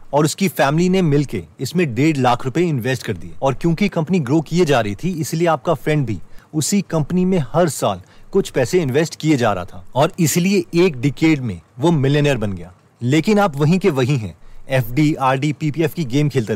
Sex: male